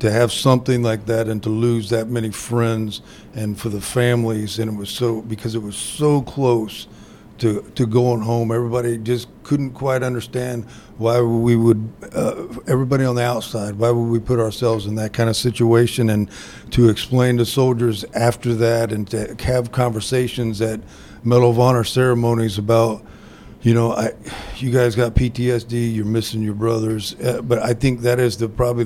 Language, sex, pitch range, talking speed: English, male, 110-125 Hz, 180 wpm